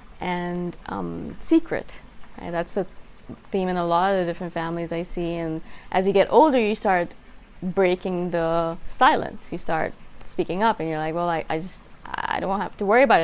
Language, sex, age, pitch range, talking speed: English, female, 20-39, 170-200 Hz, 195 wpm